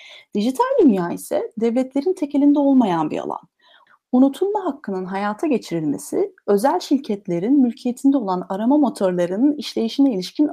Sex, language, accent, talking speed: female, Turkish, native, 115 wpm